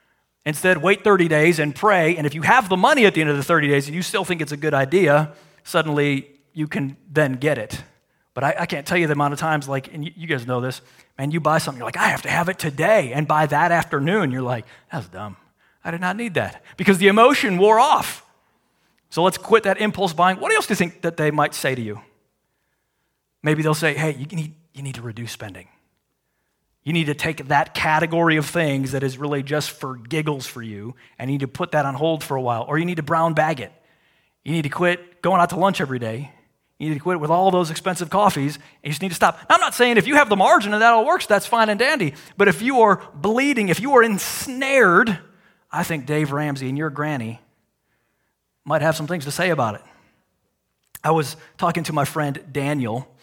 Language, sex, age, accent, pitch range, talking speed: English, male, 40-59, American, 145-180 Hz, 240 wpm